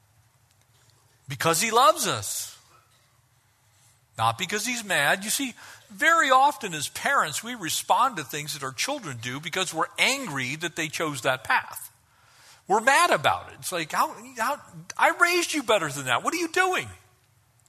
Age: 50-69